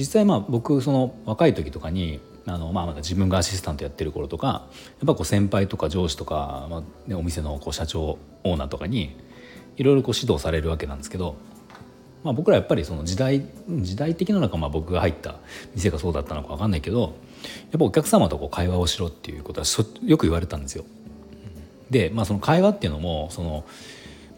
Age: 40-59